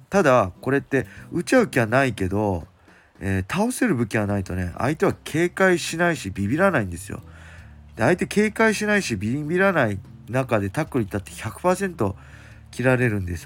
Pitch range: 100-140 Hz